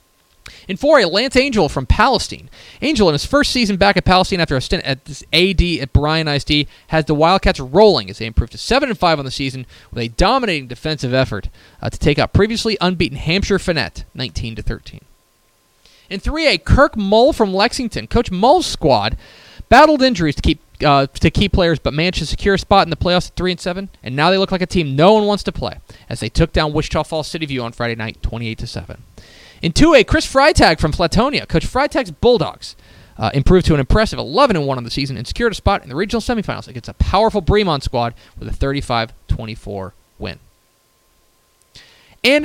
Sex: male